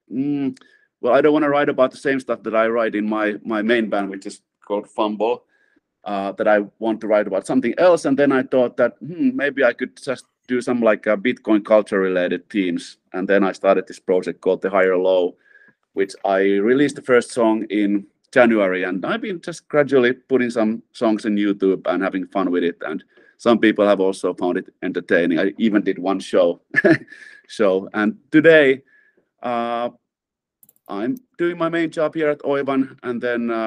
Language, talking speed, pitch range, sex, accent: English, 195 wpm, 100-125 Hz, male, Finnish